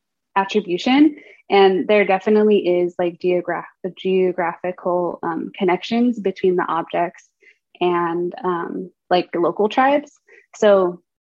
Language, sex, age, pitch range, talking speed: English, female, 20-39, 175-195 Hz, 105 wpm